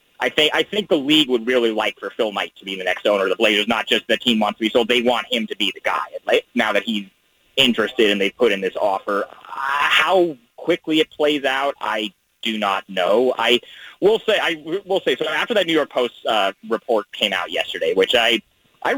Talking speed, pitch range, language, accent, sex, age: 235 wpm, 110-175 Hz, English, American, male, 30-49